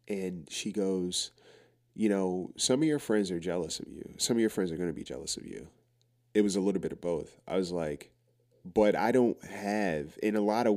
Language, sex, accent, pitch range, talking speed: English, male, American, 85-110 Hz, 235 wpm